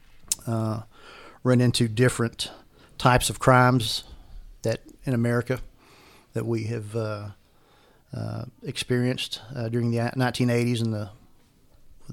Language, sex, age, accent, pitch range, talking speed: English, male, 40-59, American, 110-120 Hz, 110 wpm